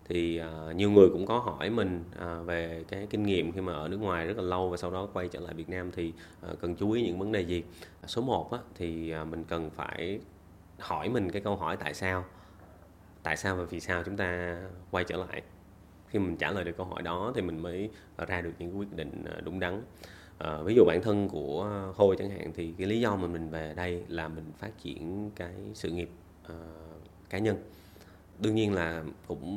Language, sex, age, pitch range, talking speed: Vietnamese, male, 20-39, 85-95 Hz, 215 wpm